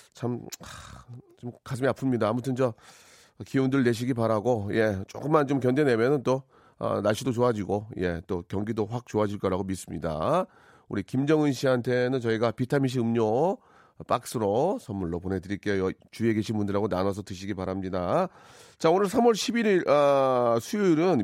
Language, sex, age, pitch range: Korean, male, 40-59, 110-145 Hz